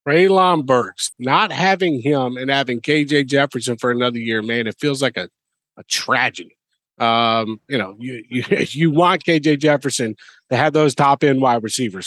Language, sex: English, male